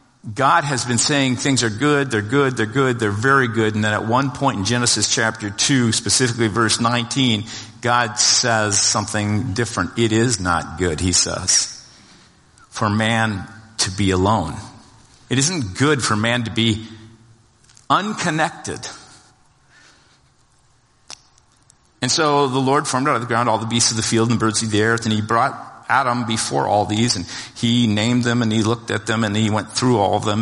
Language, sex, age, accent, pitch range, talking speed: English, male, 50-69, American, 105-125 Hz, 180 wpm